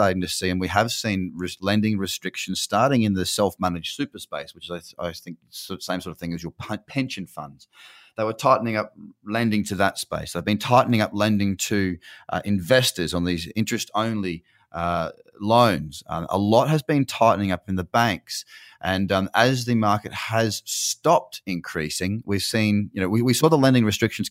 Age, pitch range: 30-49, 90-115 Hz